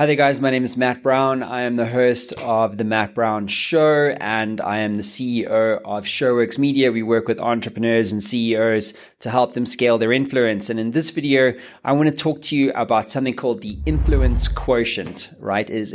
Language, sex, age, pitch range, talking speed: English, male, 20-39, 110-130 Hz, 210 wpm